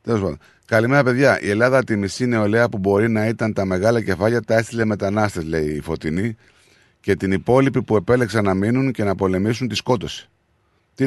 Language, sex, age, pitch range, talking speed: Greek, male, 30-49, 95-120 Hz, 180 wpm